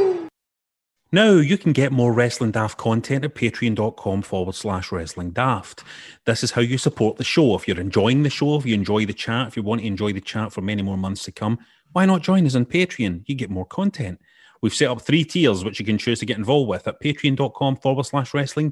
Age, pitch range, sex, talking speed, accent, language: 30-49, 105-135 Hz, male, 230 wpm, British, English